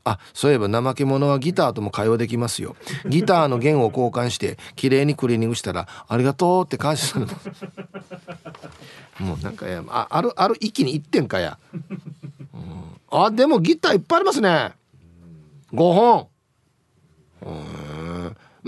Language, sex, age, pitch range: Japanese, male, 40-59, 105-155 Hz